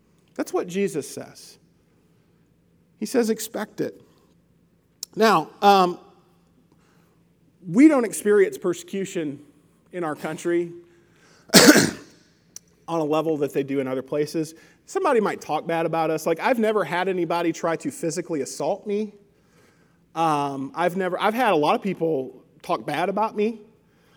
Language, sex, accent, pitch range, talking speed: English, male, American, 150-185 Hz, 135 wpm